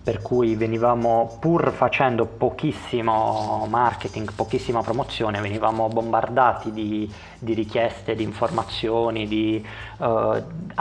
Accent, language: native, Italian